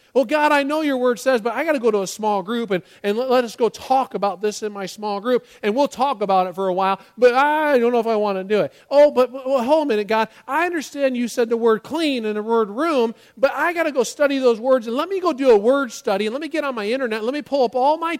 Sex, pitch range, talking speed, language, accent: male, 205-280 Hz, 315 wpm, English, American